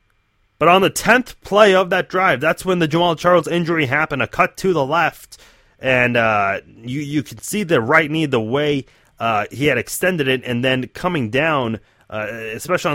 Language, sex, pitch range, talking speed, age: English, male, 115-155 Hz, 190 wpm, 30-49